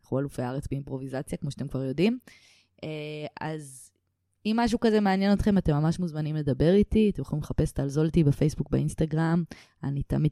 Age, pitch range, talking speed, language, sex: 20-39, 140-195 Hz, 155 wpm, Hebrew, female